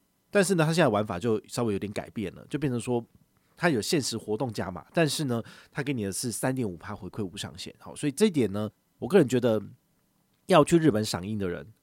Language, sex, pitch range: Chinese, male, 100-145 Hz